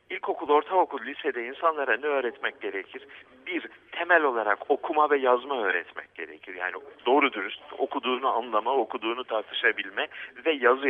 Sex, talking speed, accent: male, 130 wpm, native